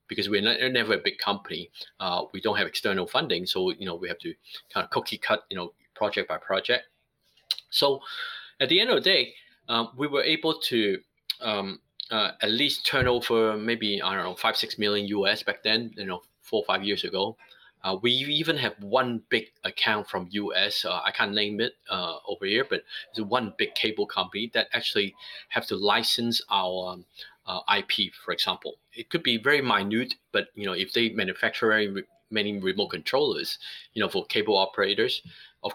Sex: male